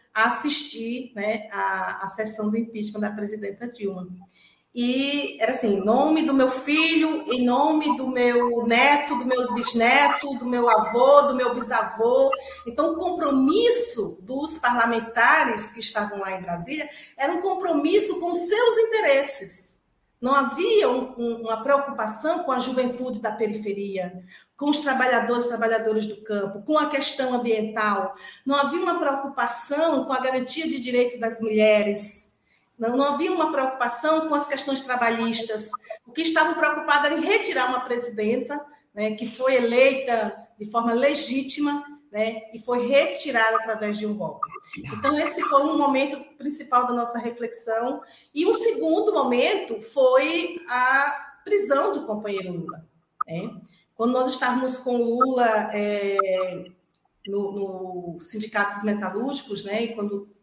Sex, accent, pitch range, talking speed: female, Brazilian, 215-285 Hz, 150 wpm